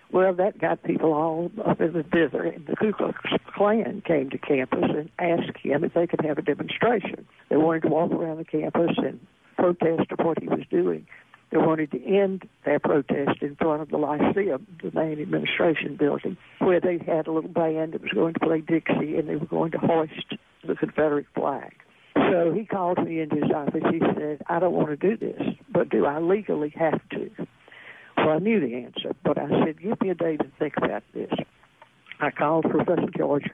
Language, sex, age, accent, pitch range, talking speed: English, female, 60-79, American, 150-175 Hz, 210 wpm